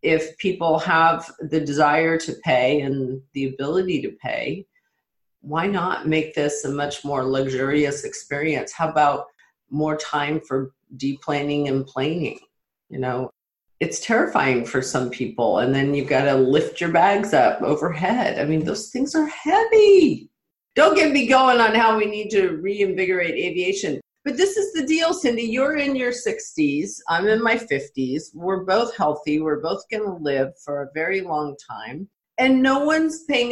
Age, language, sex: 40-59, English, female